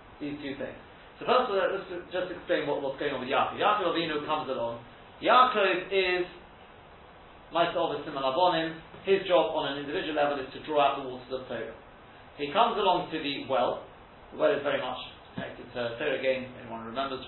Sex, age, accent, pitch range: male, 40-59, British, 130-175 Hz